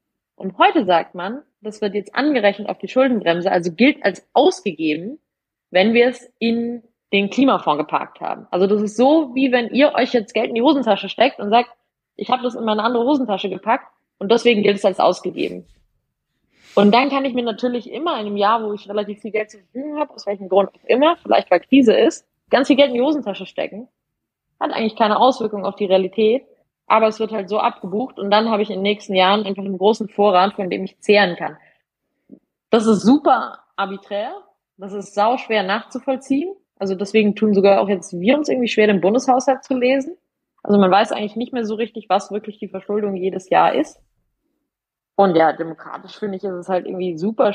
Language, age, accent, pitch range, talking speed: German, 20-39, German, 195-240 Hz, 205 wpm